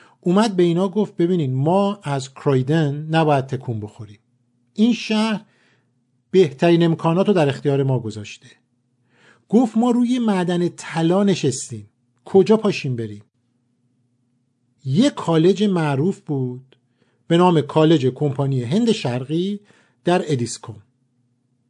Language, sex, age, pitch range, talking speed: Persian, male, 50-69, 125-195 Hz, 115 wpm